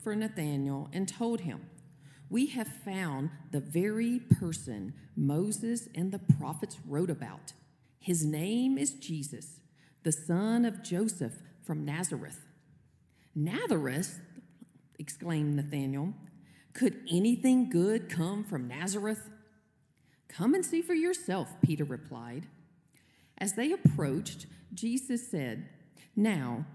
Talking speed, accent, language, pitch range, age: 110 wpm, American, English, 150-230 Hz, 40-59